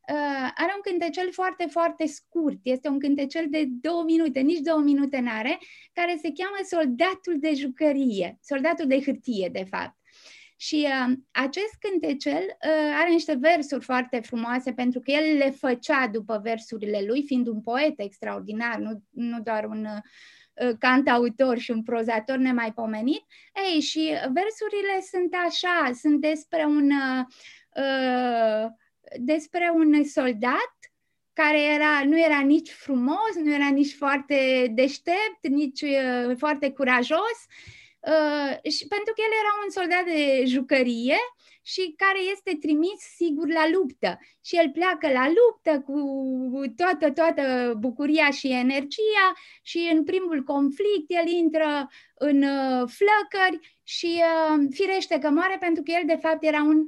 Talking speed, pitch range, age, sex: 145 wpm, 260-340 Hz, 20-39, female